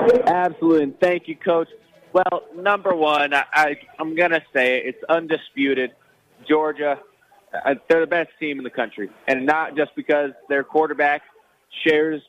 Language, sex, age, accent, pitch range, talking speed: English, male, 30-49, American, 145-190 Hz, 145 wpm